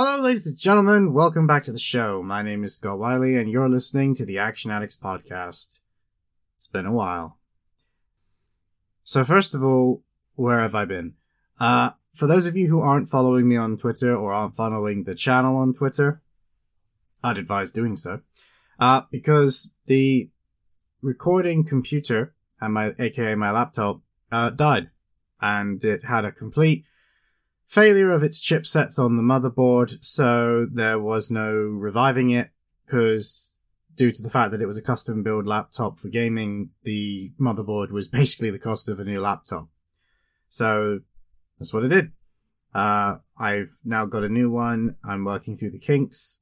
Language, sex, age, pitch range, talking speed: English, male, 30-49, 105-135 Hz, 165 wpm